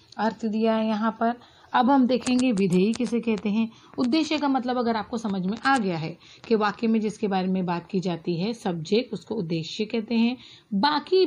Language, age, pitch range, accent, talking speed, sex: Marathi, 40-59, 185-240 Hz, native, 200 wpm, female